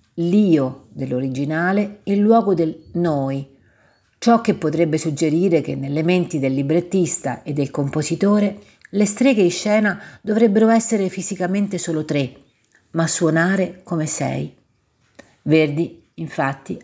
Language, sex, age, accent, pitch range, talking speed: Italian, female, 50-69, native, 140-180 Hz, 120 wpm